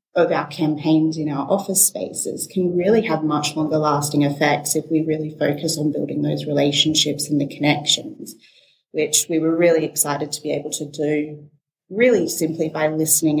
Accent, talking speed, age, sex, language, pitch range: Australian, 175 wpm, 30-49, female, English, 155-175 Hz